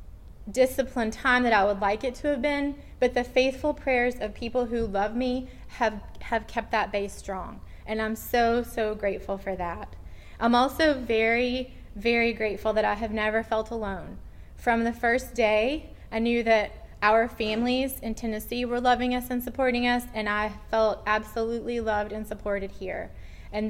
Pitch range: 205-240 Hz